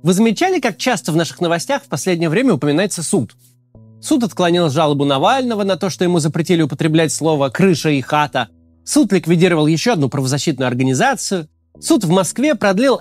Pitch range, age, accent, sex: 145-220 Hz, 30-49, native, male